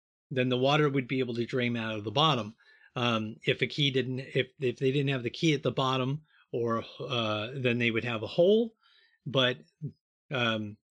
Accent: American